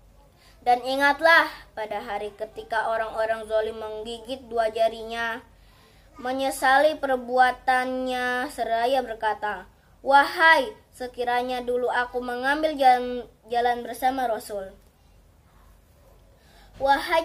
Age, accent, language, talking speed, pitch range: 20-39, native, Indonesian, 80 wpm, 225-265 Hz